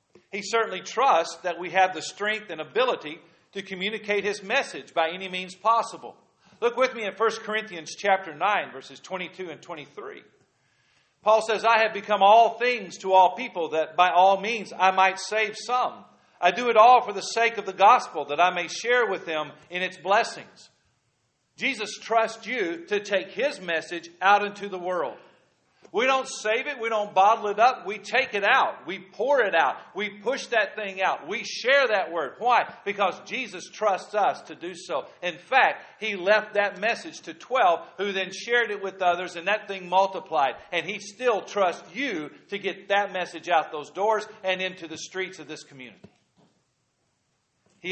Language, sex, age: English, male, 50-69